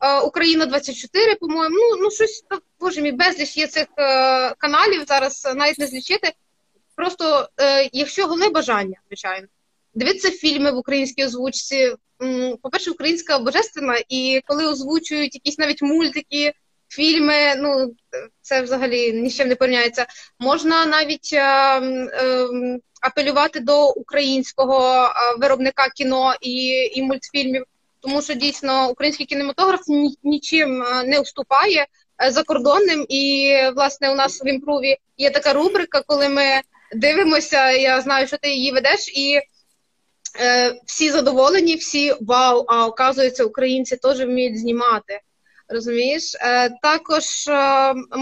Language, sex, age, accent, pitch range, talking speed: Ukrainian, female, 20-39, native, 260-305 Hz, 125 wpm